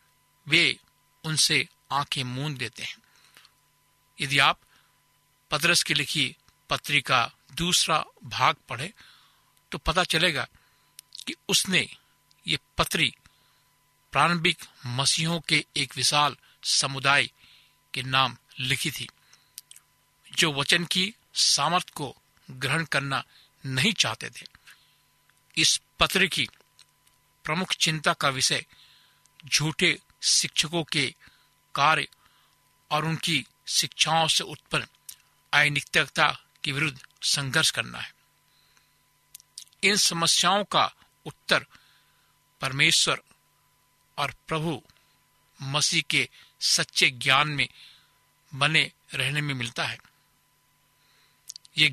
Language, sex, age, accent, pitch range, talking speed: Hindi, male, 60-79, native, 140-160 Hz, 95 wpm